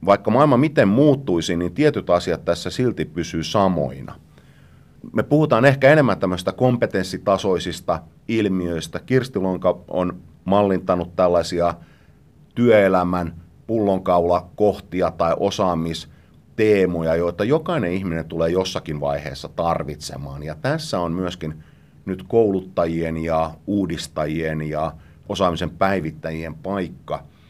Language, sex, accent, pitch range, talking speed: Finnish, male, native, 80-95 Hz, 100 wpm